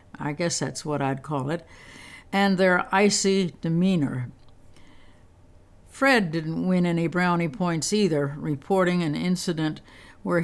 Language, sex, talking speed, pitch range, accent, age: English, female, 125 wpm, 145-195 Hz, American, 60-79